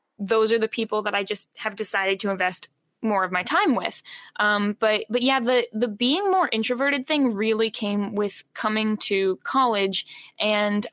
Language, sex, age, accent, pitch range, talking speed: English, female, 10-29, American, 200-230 Hz, 180 wpm